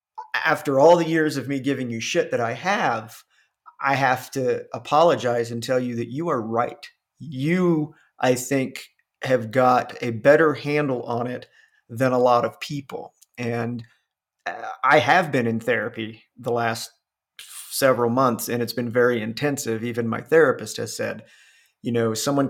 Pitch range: 115-135 Hz